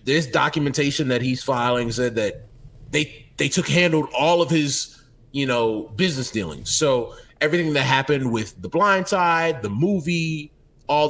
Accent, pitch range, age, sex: American, 115-150 Hz, 20-39, male